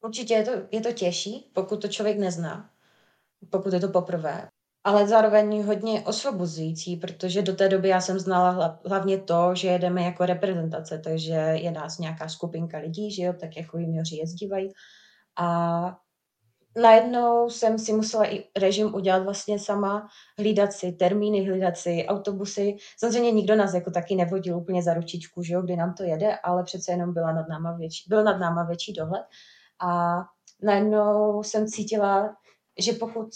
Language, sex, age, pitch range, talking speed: Czech, female, 20-39, 175-205 Hz, 160 wpm